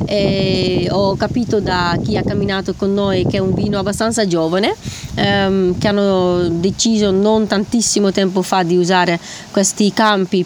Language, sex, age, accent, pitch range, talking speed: Italian, female, 20-39, native, 185-220 Hz, 155 wpm